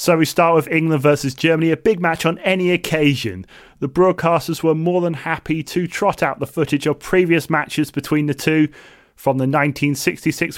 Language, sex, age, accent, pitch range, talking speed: English, male, 30-49, British, 140-170 Hz, 185 wpm